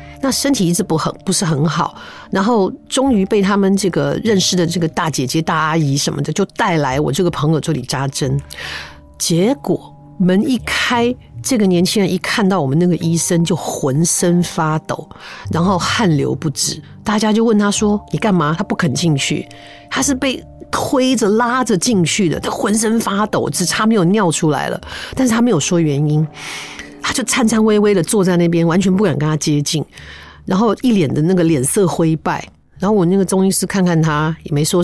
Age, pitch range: 50-69, 160-215 Hz